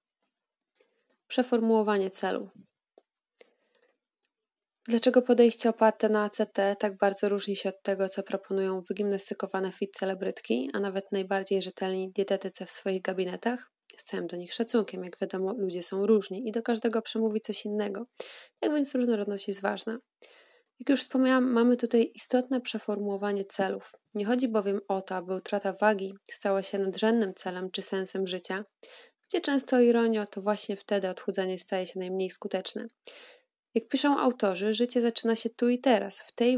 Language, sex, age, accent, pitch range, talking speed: Polish, female, 20-39, native, 190-235 Hz, 155 wpm